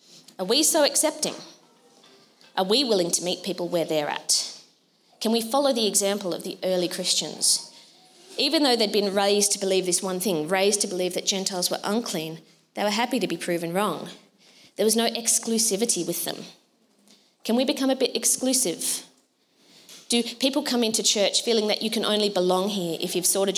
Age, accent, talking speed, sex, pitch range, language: 20-39, Australian, 185 wpm, female, 185-235 Hz, English